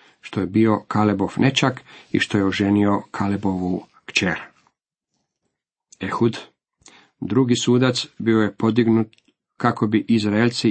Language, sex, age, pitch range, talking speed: Croatian, male, 50-69, 105-125 Hz, 110 wpm